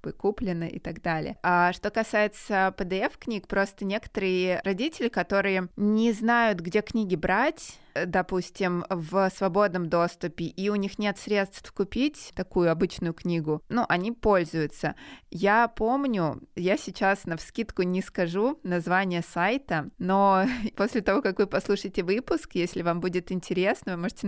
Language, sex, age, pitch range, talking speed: Russian, female, 20-39, 175-210 Hz, 140 wpm